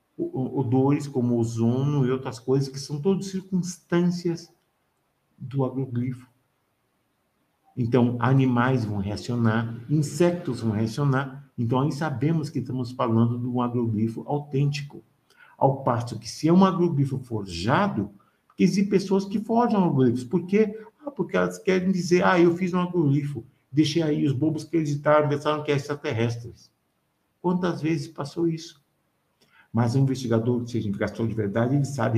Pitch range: 120-165 Hz